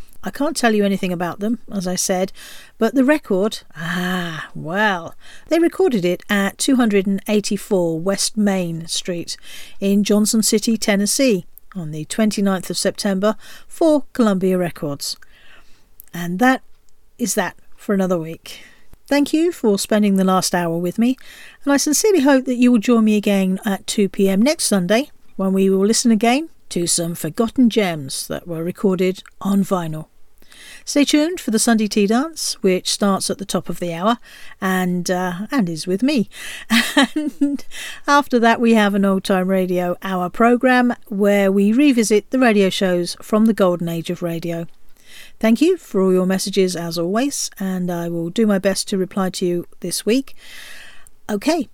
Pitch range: 185-240 Hz